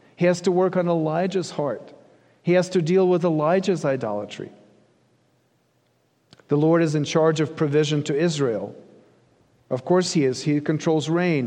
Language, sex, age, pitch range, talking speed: English, male, 40-59, 145-185 Hz, 155 wpm